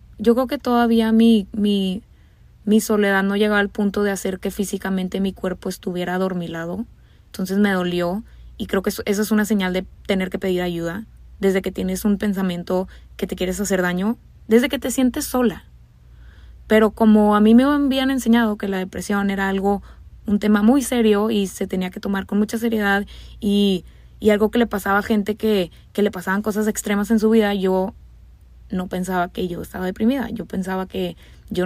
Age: 20-39